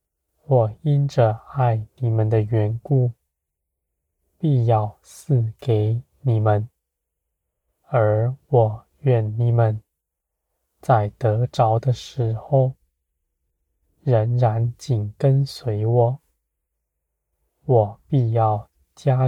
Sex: male